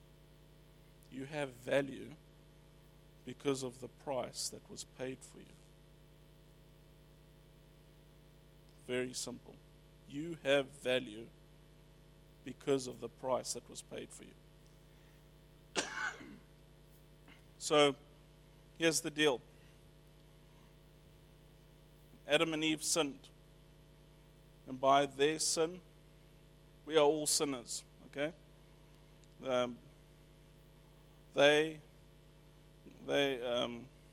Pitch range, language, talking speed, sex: 145-155 Hz, English, 85 wpm, male